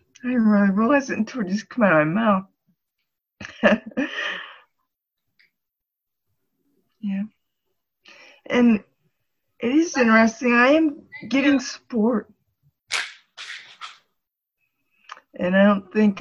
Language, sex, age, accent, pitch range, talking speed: English, female, 60-79, American, 195-240 Hz, 95 wpm